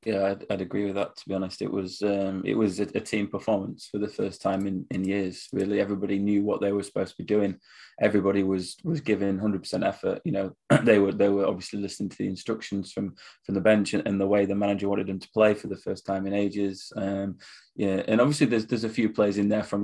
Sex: male